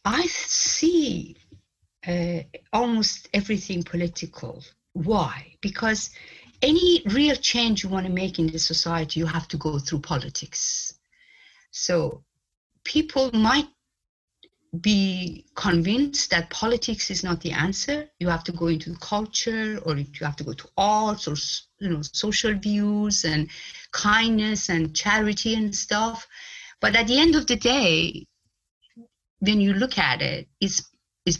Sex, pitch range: female, 165-235 Hz